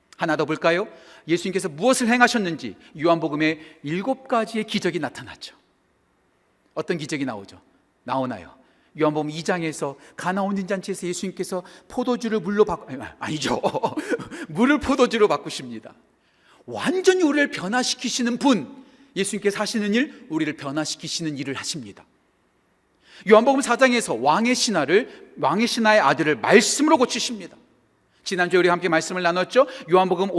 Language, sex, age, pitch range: Korean, male, 40-59, 155-240 Hz